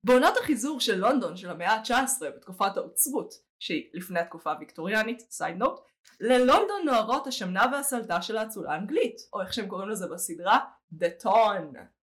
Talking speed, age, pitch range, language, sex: 145 wpm, 20-39, 195-270 Hz, Hebrew, female